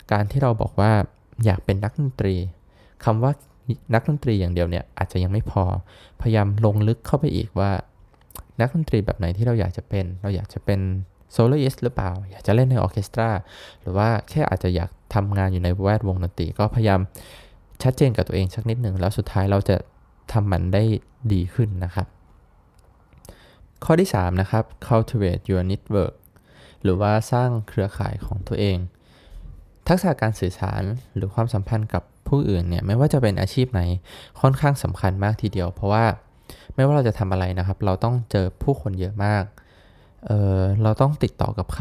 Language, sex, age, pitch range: Thai, male, 20-39, 95-115 Hz